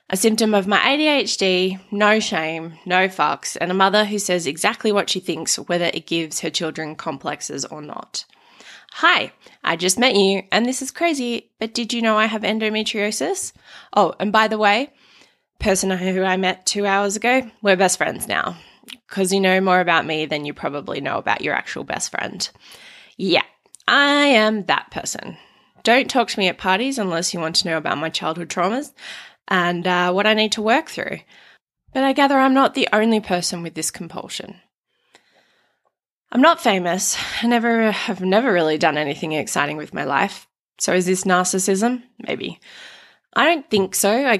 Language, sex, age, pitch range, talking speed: English, female, 20-39, 180-225 Hz, 180 wpm